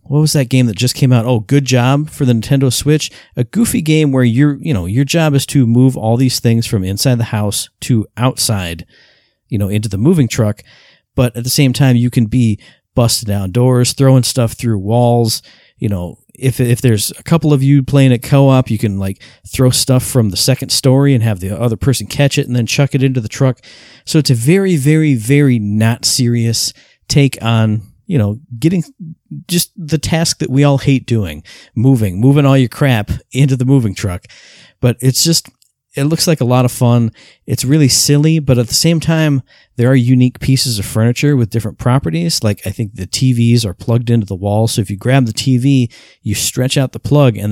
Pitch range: 115-140 Hz